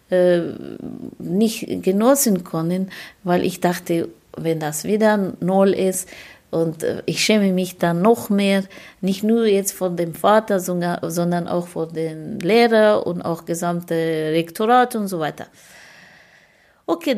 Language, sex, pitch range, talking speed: German, female, 185-240 Hz, 130 wpm